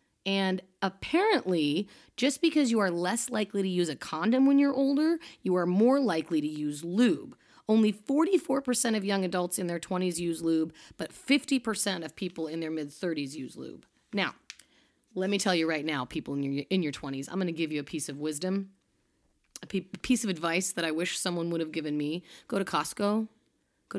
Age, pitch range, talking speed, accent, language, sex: 30-49, 160-210 Hz, 195 wpm, American, English, female